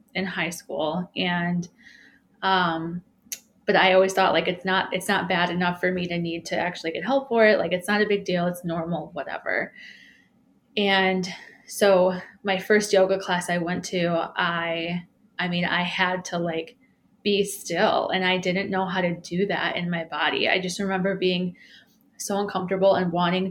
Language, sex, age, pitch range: English, female, 20-39, 175-200 Hz